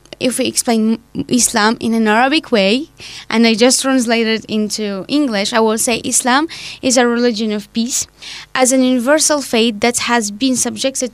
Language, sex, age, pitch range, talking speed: English, female, 20-39, 230-265 Hz, 165 wpm